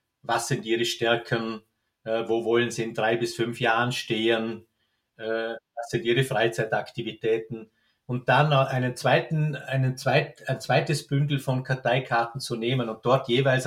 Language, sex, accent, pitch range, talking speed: German, male, Austrian, 115-145 Hz, 145 wpm